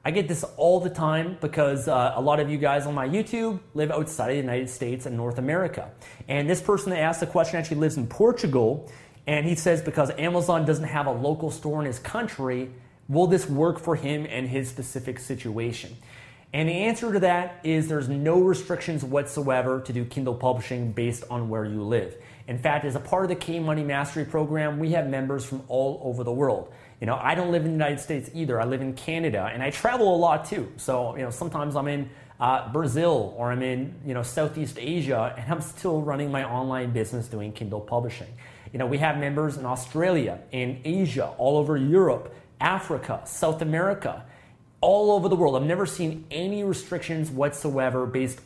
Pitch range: 125-160 Hz